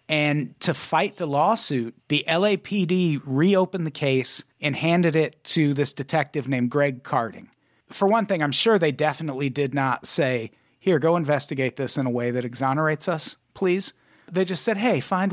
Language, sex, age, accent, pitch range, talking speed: English, male, 40-59, American, 130-170 Hz, 175 wpm